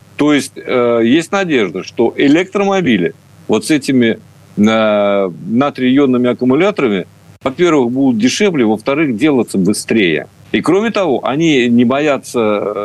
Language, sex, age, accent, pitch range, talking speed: Russian, male, 50-69, native, 110-160 Hz, 115 wpm